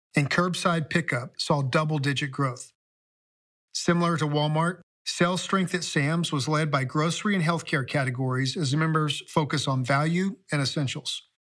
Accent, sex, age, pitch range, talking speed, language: American, male, 50-69, 140-170 Hz, 140 wpm, English